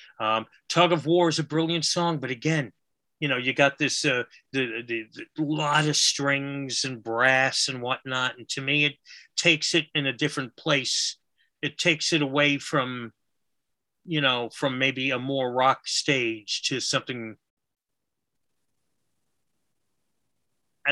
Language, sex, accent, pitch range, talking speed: English, male, American, 120-155 Hz, 150 wpm